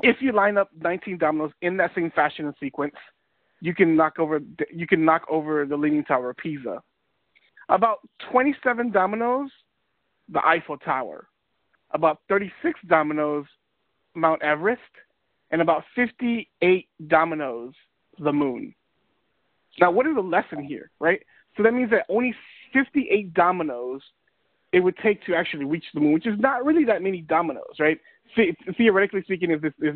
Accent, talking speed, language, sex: American, 155 wpm, English, male